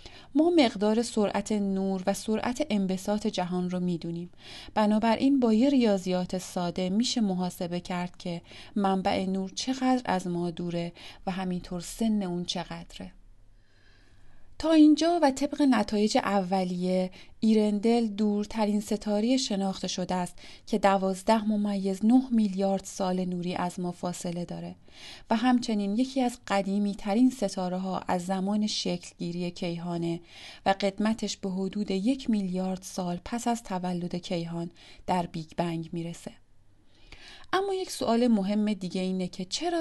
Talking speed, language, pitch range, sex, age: 135 wpm, Persian, 180-220 Hz, female, 30-49